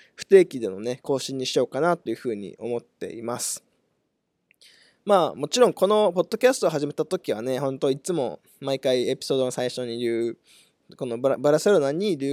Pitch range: 120-180 Hz